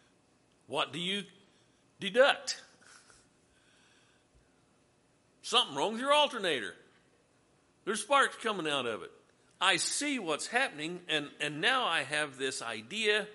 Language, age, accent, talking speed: English, 50-69, American, 115 wpm